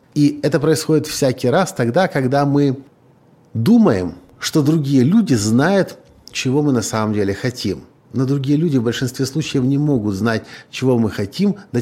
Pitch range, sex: 110-145 Hz, male